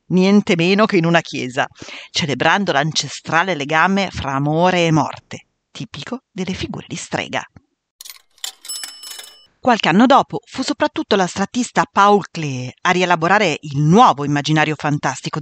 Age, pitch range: 40-59, 150-215 Hz